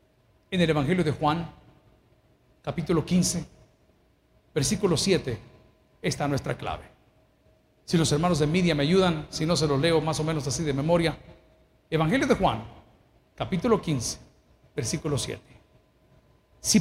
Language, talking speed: Spanish, 135 wpm